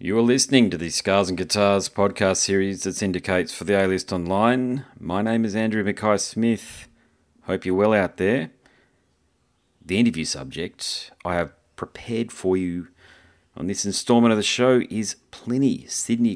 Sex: male